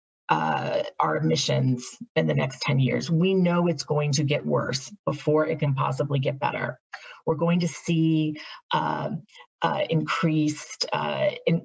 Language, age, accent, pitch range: English, 40-59, American, 150-185 Hz